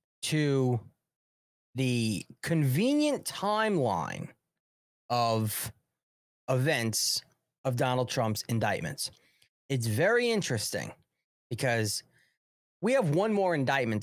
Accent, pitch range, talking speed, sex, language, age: American, 110-140 Hz, 80 wpm, male, English, 30-49